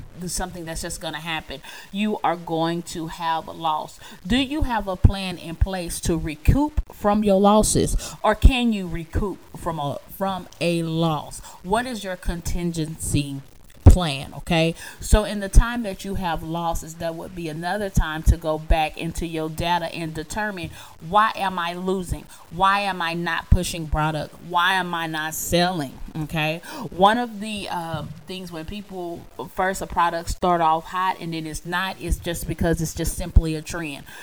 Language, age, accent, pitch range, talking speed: English, 30-49, American, 160-190 Hz, 180 wpm